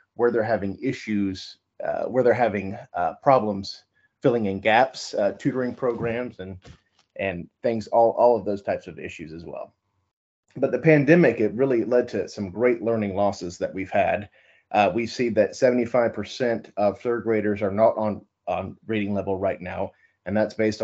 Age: 30-49